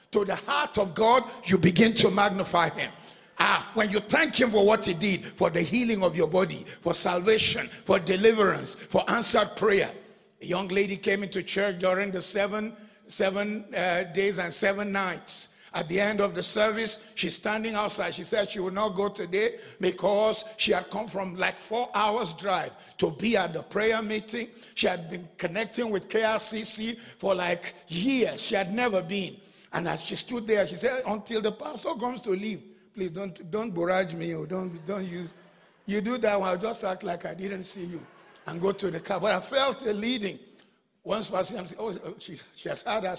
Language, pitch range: English, 185-215 Hz